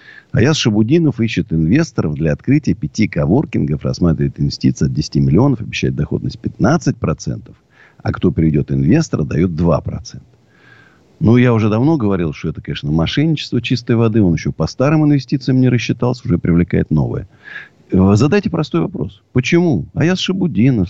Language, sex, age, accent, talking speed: Russian, male, 50-69, native, 140 wpm